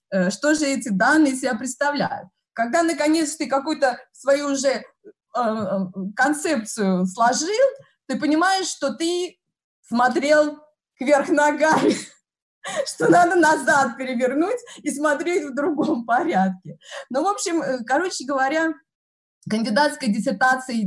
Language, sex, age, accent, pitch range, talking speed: Russian, female, 20-39, native, 200-295 Hz, 110 wpm